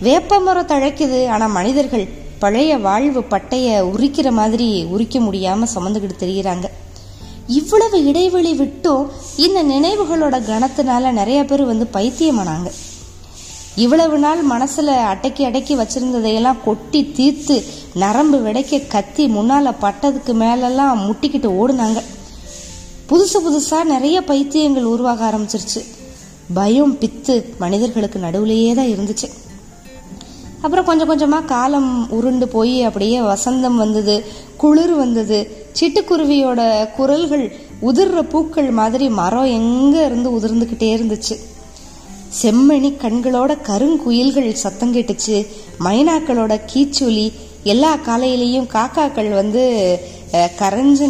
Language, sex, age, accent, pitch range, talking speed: Tamil, female, 20-39, native, 215-285 Hz, 95 wpm